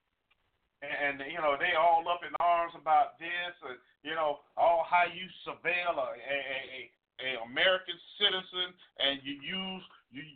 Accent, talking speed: American, 155 wpm